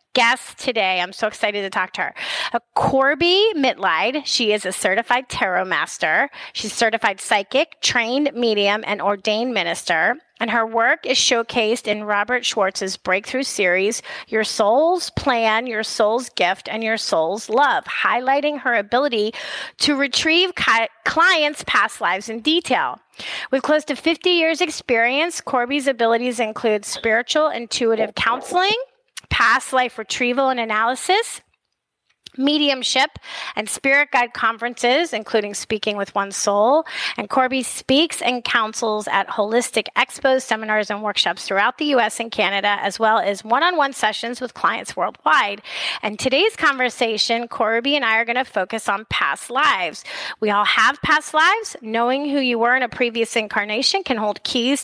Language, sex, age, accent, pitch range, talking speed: English, female, 30-49, American, 215-275 Hz, 150 wpm